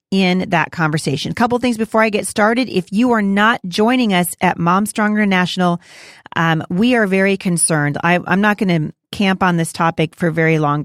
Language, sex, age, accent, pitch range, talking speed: English, female, 40-59, American, 165-200 Hz, 210 wpm